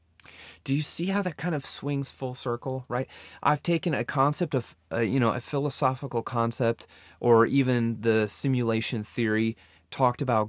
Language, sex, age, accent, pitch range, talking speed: English, male, 30-49, American, 85-130 Hz, 165 wpm